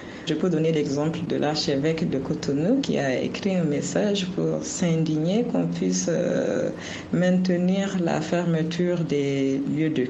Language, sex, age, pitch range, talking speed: French, female, 60-79, 145-170 Hz, 135 wpm